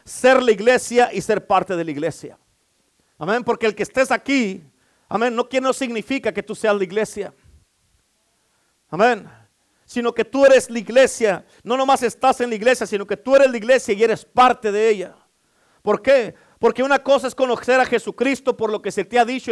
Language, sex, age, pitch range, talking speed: Spanish, male, 50-69, 210-255 Hz, 200 wpm